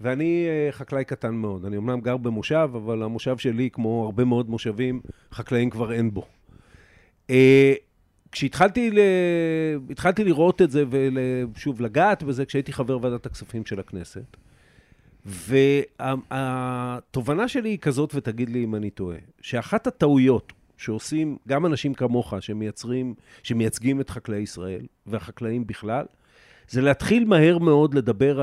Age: 50-69